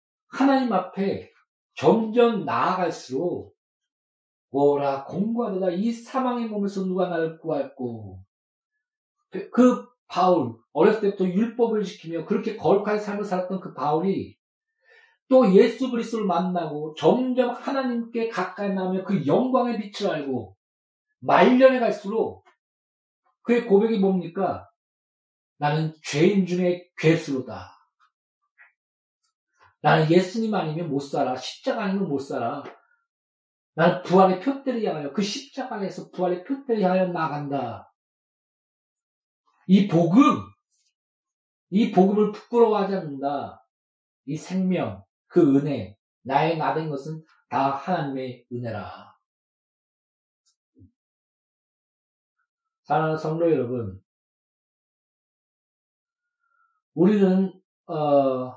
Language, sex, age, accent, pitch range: Korean, male, 40-59, native, 155-235 Hz